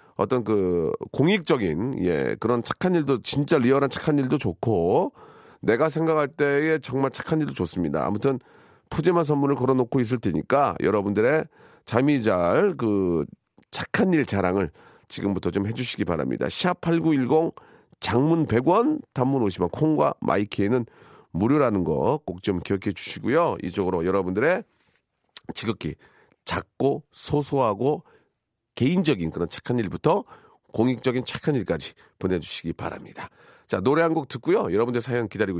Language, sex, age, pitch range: Korean, male, 40-59, 105-150 Hz